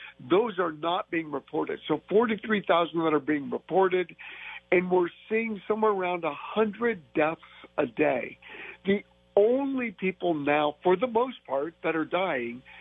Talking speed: 145 wpm